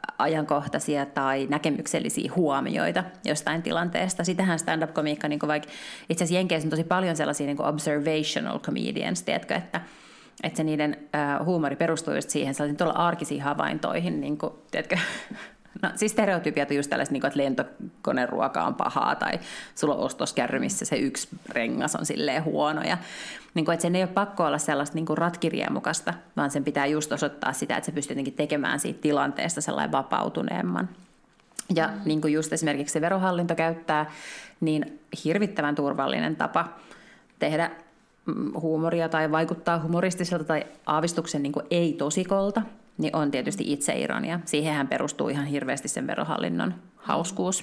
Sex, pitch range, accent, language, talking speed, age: female, 145-175 Hz, native, Finnish, 145 wpm, 30-49